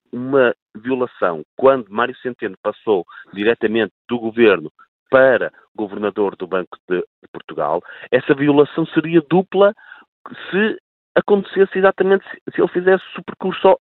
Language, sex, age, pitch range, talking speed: Portuguese, male, 40-59, 115-175 Hz, 115 wpm